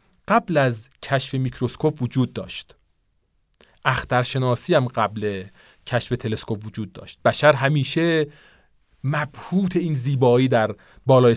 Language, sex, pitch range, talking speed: Persian, male, 125-170 Hz, 105 wpm